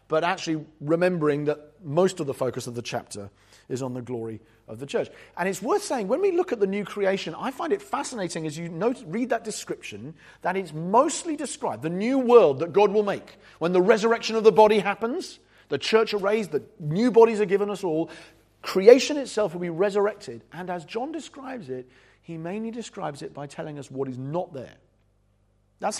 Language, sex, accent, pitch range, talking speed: English, male, British, 135-205 Hz, 205 wpm